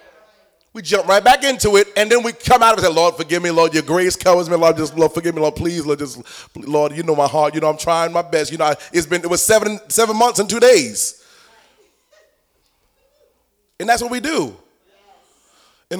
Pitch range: 160-220 Hz